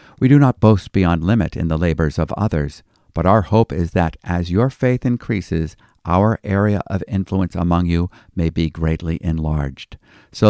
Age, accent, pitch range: 50-69, American, 85-105 Hz